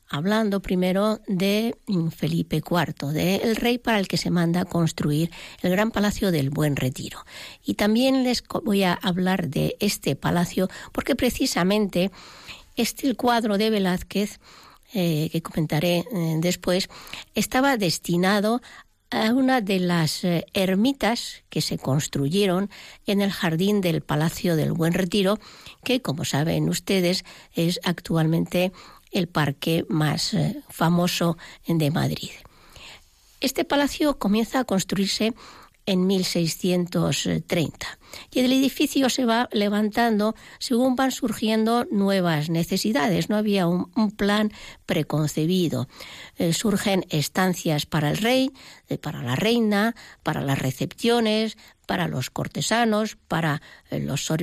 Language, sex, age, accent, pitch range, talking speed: Spanish, female, 60-79, Spanish, 170-220 Hz, 120 wpm